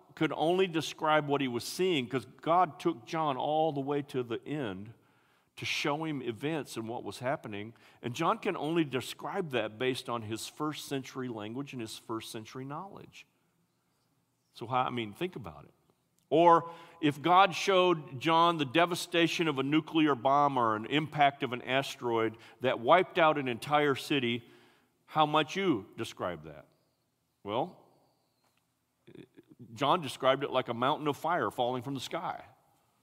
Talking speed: 165 wpm